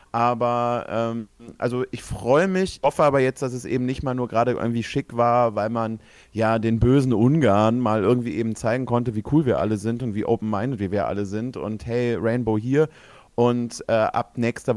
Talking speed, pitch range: 200 wpm, 110-125 Hz